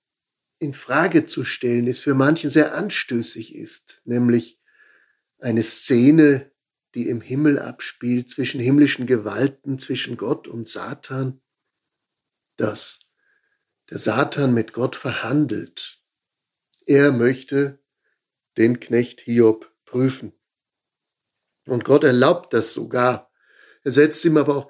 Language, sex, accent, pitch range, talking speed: German, male, German, 120-145 Hz, 110 wpm